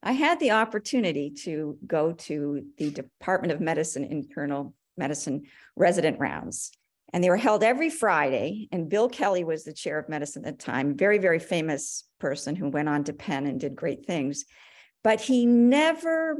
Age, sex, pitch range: 50-69, female, 155-240 Hz